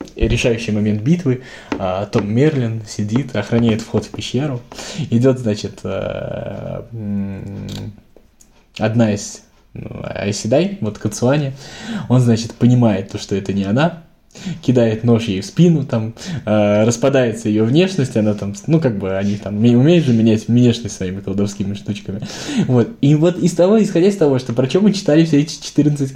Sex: male